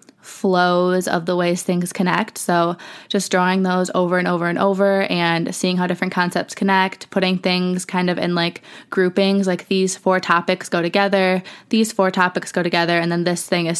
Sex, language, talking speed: female, English, 190 wpm